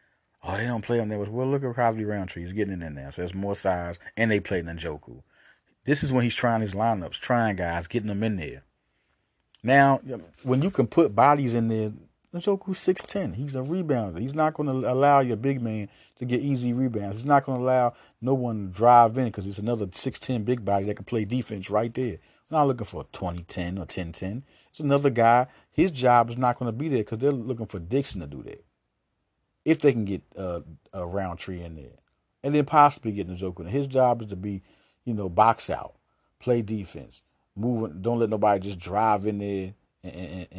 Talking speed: 220 wpm